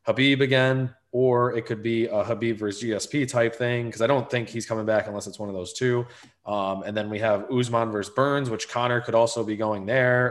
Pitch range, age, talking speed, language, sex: 105-125 Hz, 20-39, 235 wpm, English, male